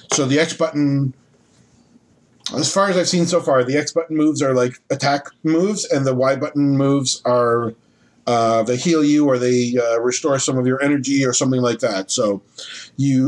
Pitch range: 125-150 Hz